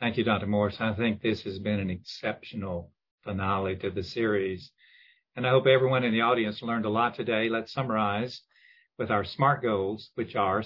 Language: English